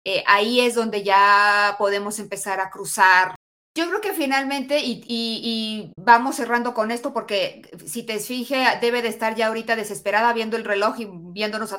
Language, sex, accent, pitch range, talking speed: Spanish, female, Mexican, 195-240 Hz, 185 wpm